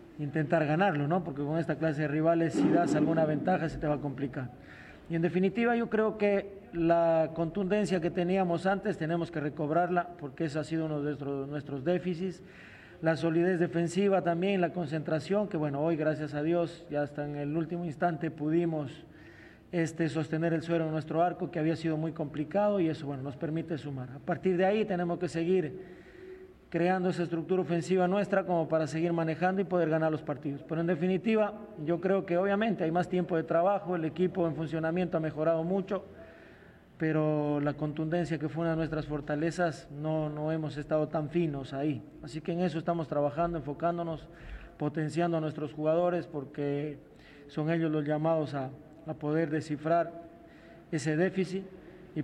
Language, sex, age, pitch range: Spanish, male, 40-59, 155-175 Hz